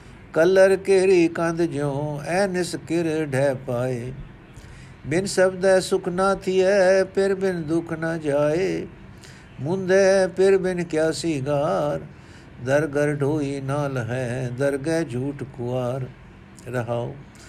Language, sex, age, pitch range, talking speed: Punjabi, male, 60-79, 145-185 Hz, 110 wpm